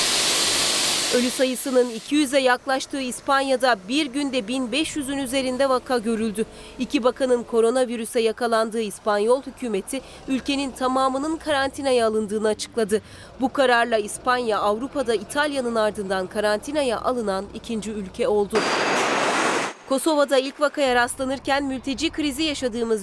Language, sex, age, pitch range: Turkish, female, 30-49, 210-265 Hz